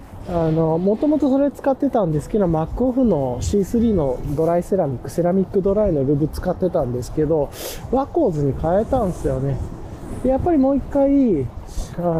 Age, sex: 20-39, male